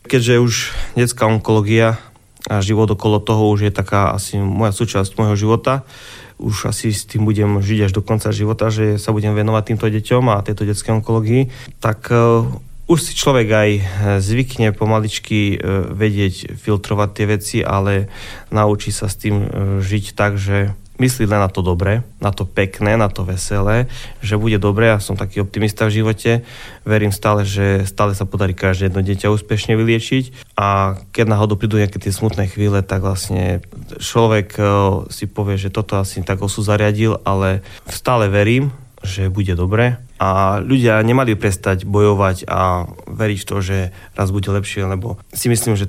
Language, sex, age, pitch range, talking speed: Slovak, male, 20-39, 100-110 Hz, 165 wpm